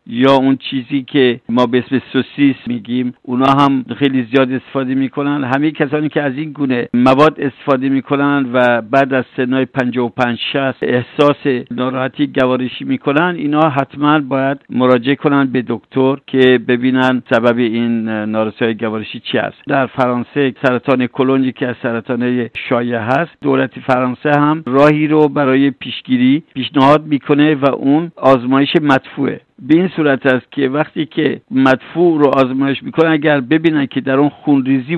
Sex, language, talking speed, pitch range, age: male, Persian, 145 wpm, 125-150 Hz, 60-79